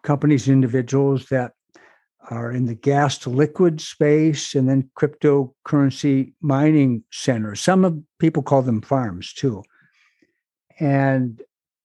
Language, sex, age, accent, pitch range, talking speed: English, male, 60-79, American, 125-155 Hz, 115 wpm